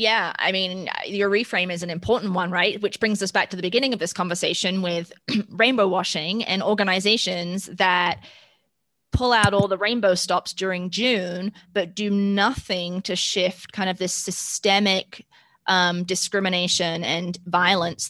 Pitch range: 180-200 Hz